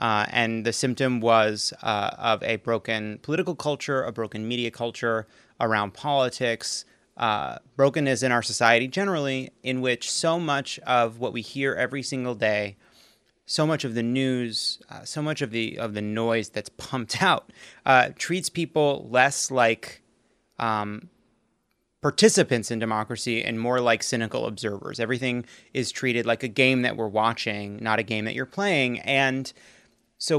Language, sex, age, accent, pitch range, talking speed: English, male, 30-49, American, 115-145 Hz, 160 wpm